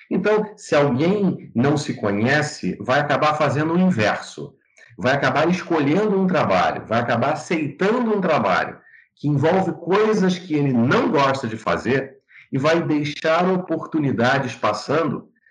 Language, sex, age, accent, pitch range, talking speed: Portuguese, male, 50-69, Brazilian, 125-185 Hz, 135 wpm